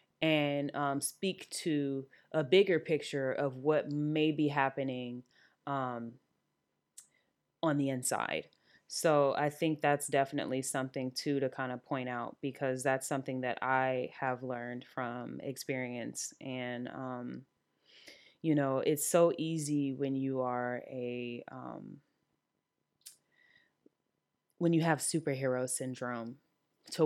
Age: 20-39